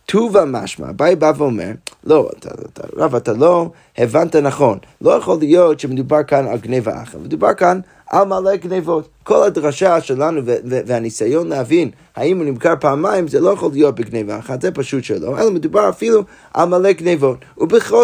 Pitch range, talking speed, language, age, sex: 125-175 Hz, 170 wpm, Hebrew, 20-39, male